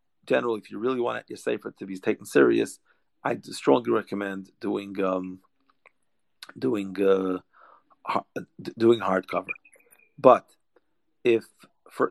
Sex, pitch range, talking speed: male, 100-135 Hz, 130 wpm